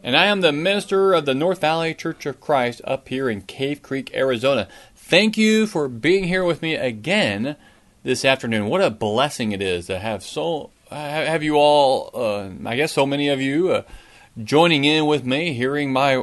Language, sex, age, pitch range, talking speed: English, male, 30-49, 120-165 Hz, 195 wpm